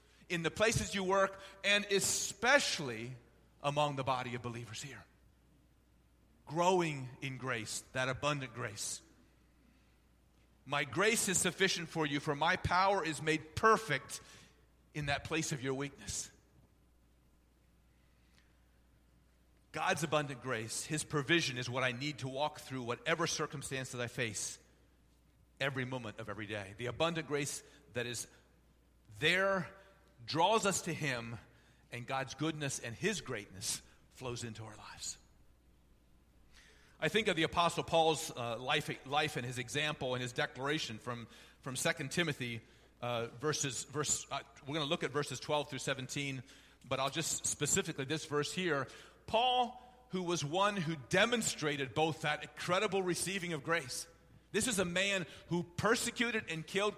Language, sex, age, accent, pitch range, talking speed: English, male, 40-59, American, 115-165 Hz, 145 wpm